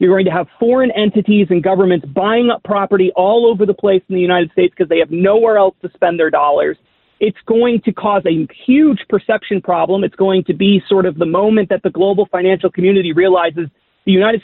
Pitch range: 190-225 Hz